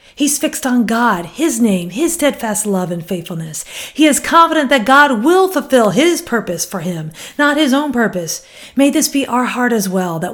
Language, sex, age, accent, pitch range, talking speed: English, female, 40-59, American, 190-255 Hz, 195 wpm